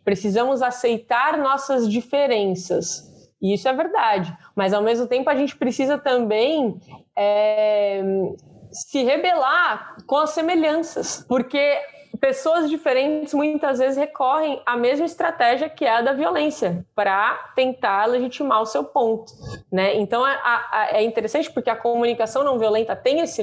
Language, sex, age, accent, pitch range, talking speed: Portuguese, female, 20-39, Brazilian, 210-290 Hz, 135 wpm